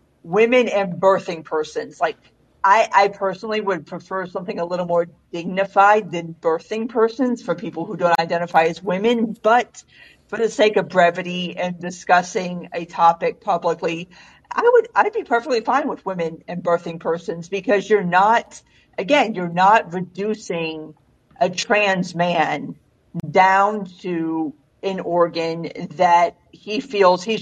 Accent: American